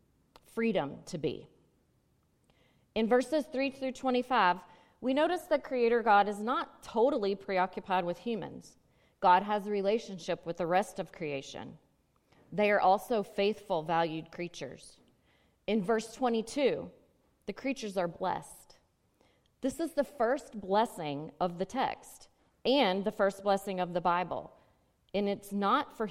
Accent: American